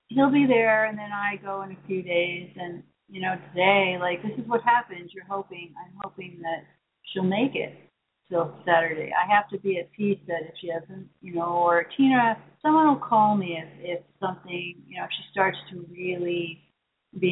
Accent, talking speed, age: American, 210 wpm, 40-59